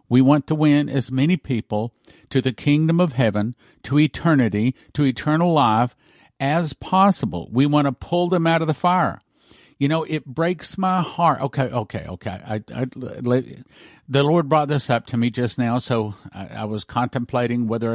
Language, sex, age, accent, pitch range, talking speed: English, male, 50-69, American, 115-145 Hz, 175 wpm